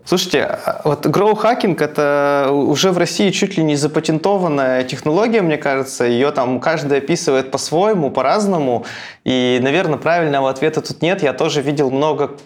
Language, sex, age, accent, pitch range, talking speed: Russian, male, 20-39, native, 135-180 Hz, 145 wpm